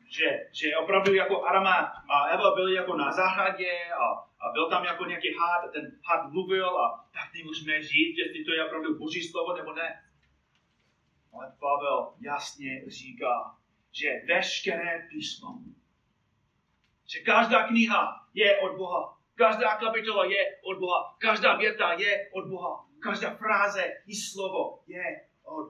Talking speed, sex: 150 wpm, male